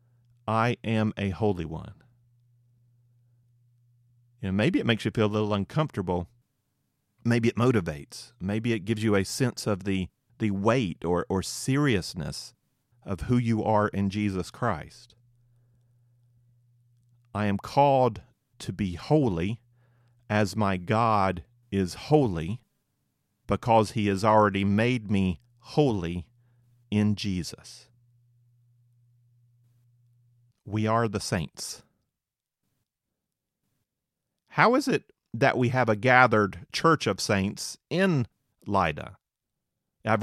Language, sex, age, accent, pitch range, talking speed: English, male, 40-59, American, 100-120 Hz, 115 wpm